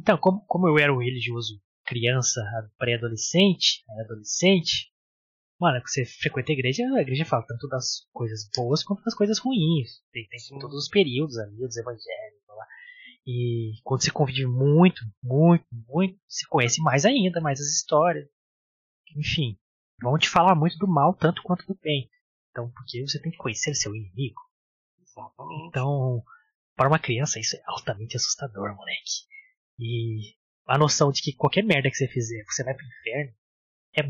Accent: Brazilian